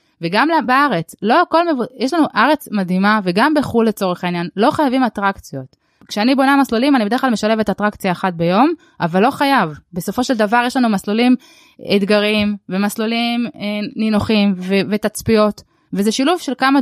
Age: 20-39